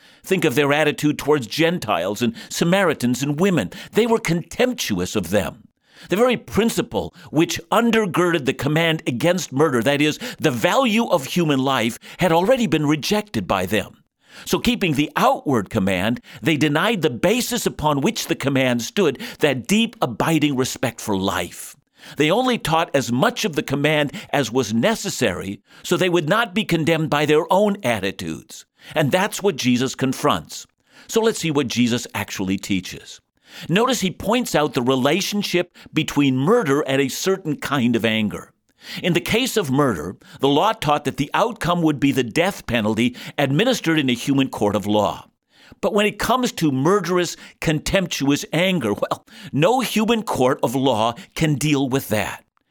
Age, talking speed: 50-69, 165 wpm